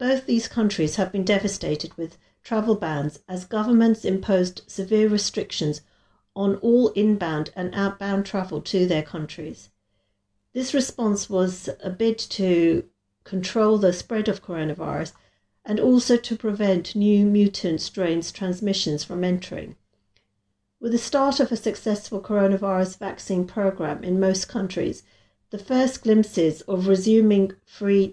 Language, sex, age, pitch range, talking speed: English, female, 50-69, 165-210 Hz, 130 wpm